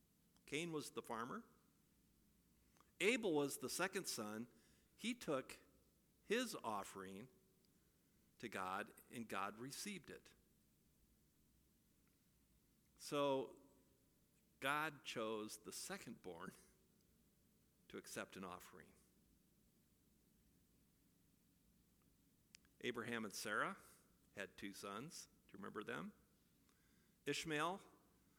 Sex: male